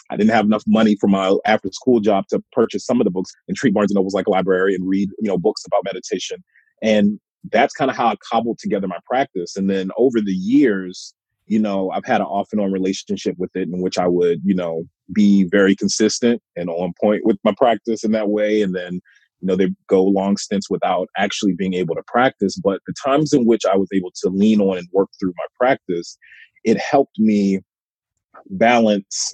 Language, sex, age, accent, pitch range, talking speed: English, male, 30-49, American, 95-115 Hz, 220 wpm